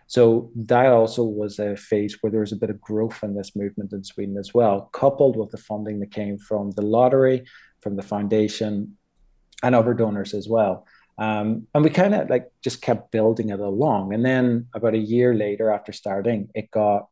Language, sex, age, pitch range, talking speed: English, male, 30-49, 100-115 Hz, 205 wpm